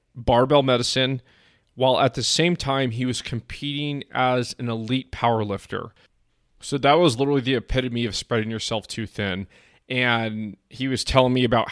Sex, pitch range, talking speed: male, 110-135 Hz, 160 wpm